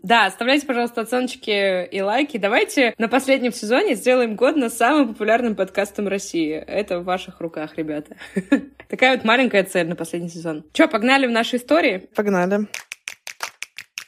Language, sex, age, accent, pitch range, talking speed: Russian, female, 20-39, native, 185-240 Hz, 150 wpm